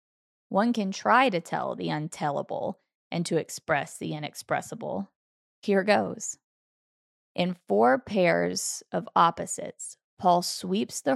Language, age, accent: English, 20-39, American